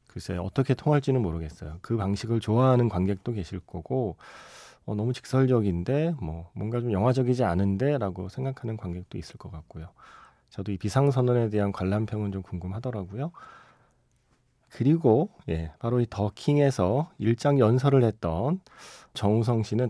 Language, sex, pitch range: Korean, male, 95-130 Hz